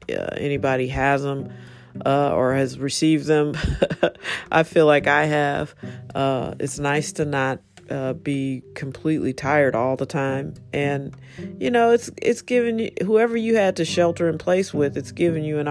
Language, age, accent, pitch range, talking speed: English, 40-59, American, 135-155 Hz, 170 wpm